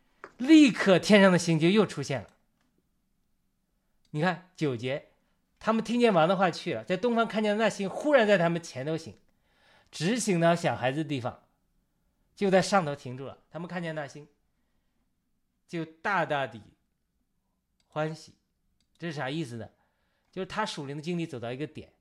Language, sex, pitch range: Chinese, male, 115-180 Hz